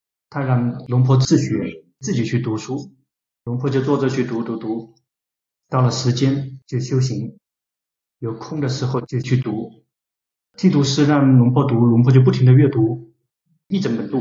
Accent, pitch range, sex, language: native, 120-145 Hz, male, Chinese